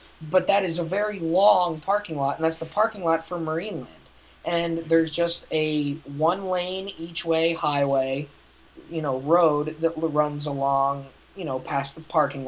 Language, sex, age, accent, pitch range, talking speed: English, male, 20-39, American, 150-190 Hz, 160 wpm